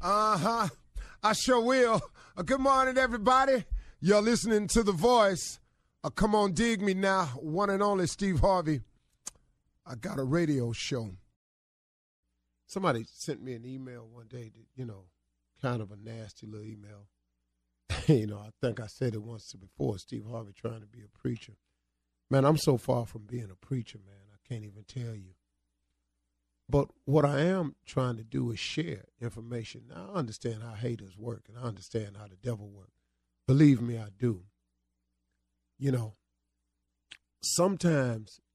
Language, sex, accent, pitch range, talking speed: English, male, American, 95-145 Hz, 165 wpm